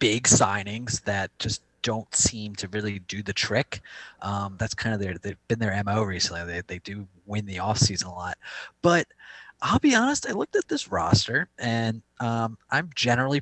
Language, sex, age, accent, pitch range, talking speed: English, male, 30-49, American, 100-125 Hz, 190 wpm